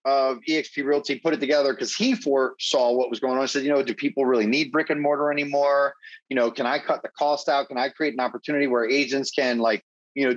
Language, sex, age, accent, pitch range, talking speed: English, male, 30-49, American, 130-165 Hz, 255 wpm